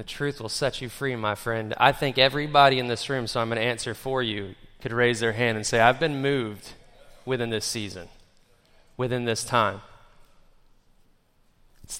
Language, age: English, 20-39